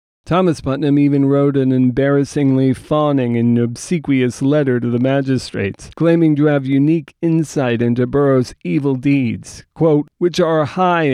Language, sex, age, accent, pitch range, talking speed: English, male, 40-59, American, 135-165 Hz, 140 wpm